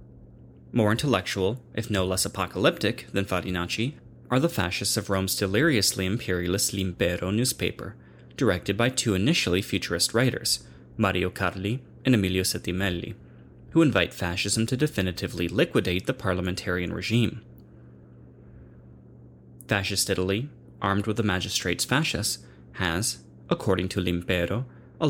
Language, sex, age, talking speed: English, male, 30-49, 115 wpm